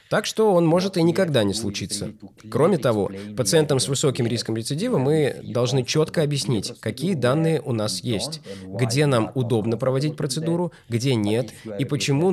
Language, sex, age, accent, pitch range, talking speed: Russian, male, 20-39, native, 110-150 Hz, 160 wpm